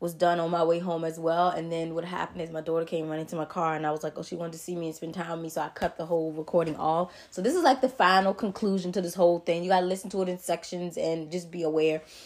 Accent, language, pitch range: American, English, 155-175 Hz